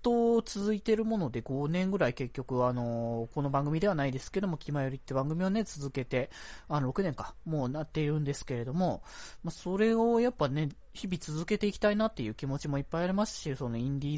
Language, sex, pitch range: Japanese, male, 130-185 Hz